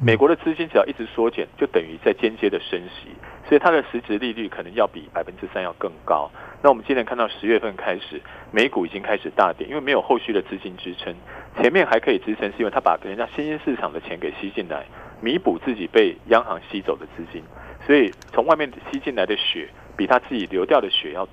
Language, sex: Chinese, male